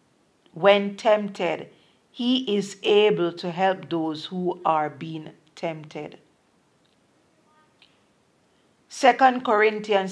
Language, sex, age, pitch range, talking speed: English, female, 50-69, 175-210 Hz, 85 wpm